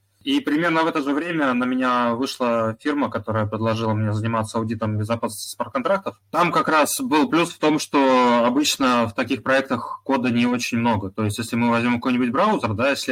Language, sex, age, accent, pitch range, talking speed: Russian, male, 20-39, native, 105-130 Hz, 185 wpm